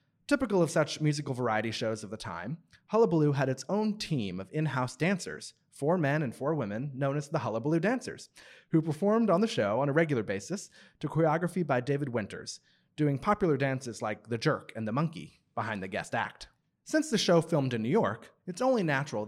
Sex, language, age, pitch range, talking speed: male, English, 30-49, 115-165 Hz, 200 wpm